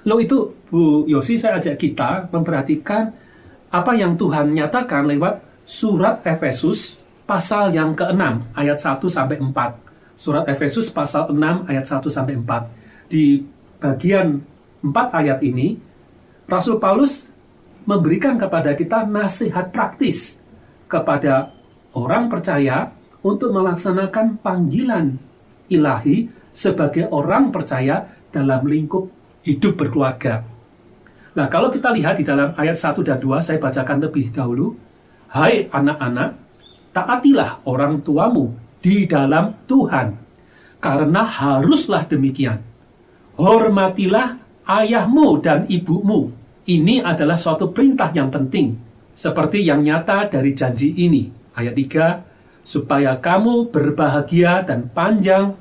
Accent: native